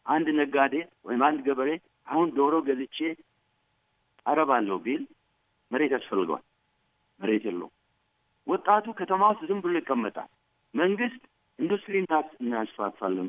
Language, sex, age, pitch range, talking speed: Amharic, male, 60-79, 140-200 Hz, 110 wpm